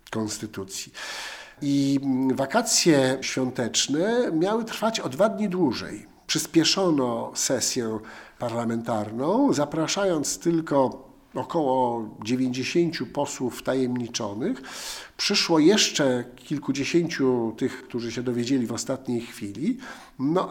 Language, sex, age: Polish, male, 50-69